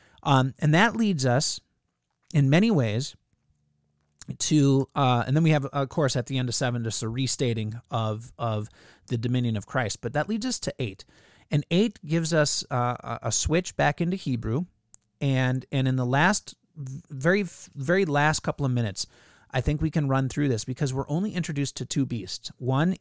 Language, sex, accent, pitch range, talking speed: English, male, American, 120-150 Hz, 190 wpm